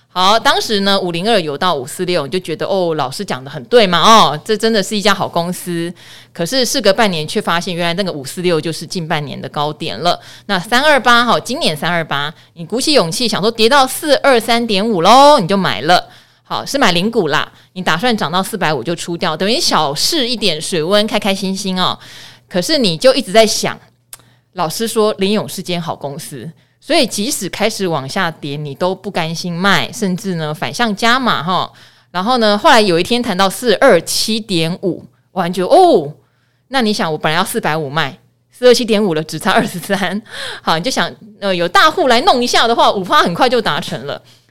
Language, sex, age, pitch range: Chinese, female, 20-39, 165-225 Hz